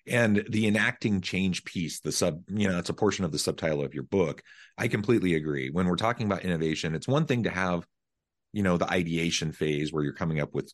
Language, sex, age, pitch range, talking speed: English, male, 30-49, 70-85 Hz, 230 wpm